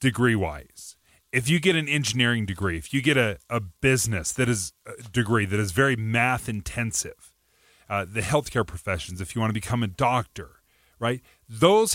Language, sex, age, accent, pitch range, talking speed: English, male, 30-49, American, 100-140 Hz, 175 wpm